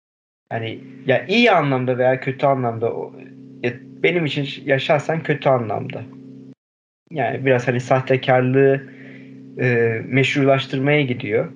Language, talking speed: Turkish, 100 wpm